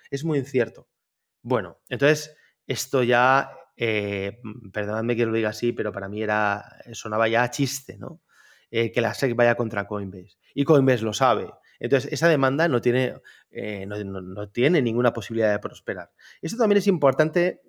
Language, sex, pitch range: Spanish, male, 110-135 Hz